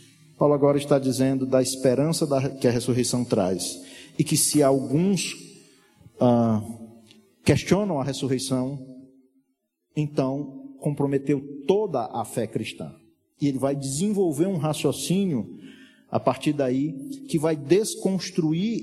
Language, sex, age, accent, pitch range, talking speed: Portuguese, male, 40-59, Brazilian, 145-225 Hz, 115 wpm